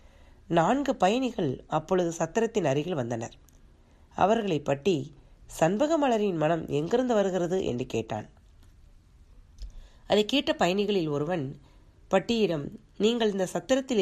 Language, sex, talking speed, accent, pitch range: Tamil, female, 95 wpm, native, 125-200 Hz